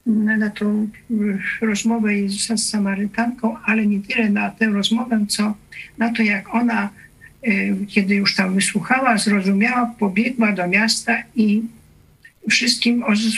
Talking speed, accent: 120 wpm, native